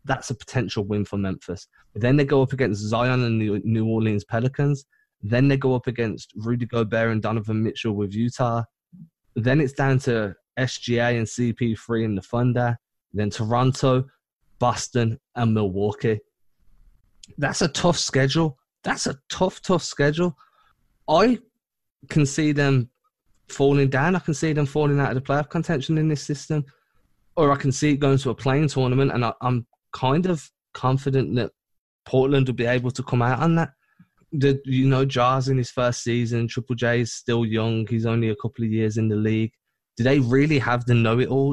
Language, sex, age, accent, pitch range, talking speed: English, male, 20-39, British, 110-135 Hz, 180 wpm